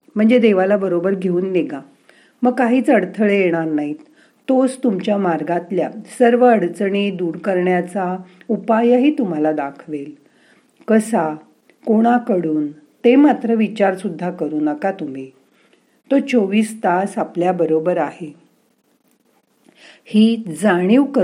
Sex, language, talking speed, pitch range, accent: female, Marathi, 70 wpm, 160-225 Hz, native